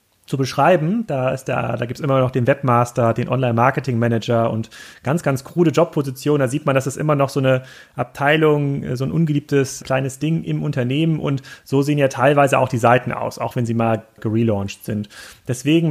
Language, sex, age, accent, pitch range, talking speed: German, male, 30-49, German, 115-140 Hz, 195 wpm